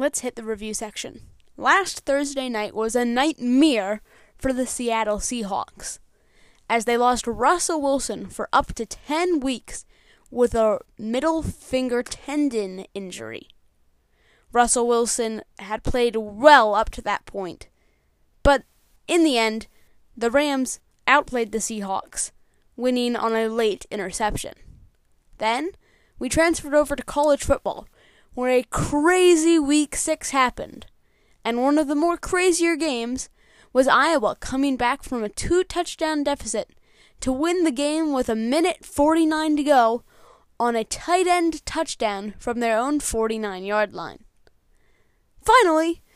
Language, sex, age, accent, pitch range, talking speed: English, female, 10-29, American, 225-300 Hz, 135 wpm